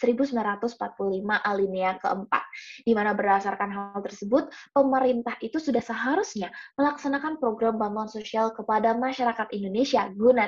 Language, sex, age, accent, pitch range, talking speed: Indonesian, female, 20-39, native, 200-245 Hz, 115 wpm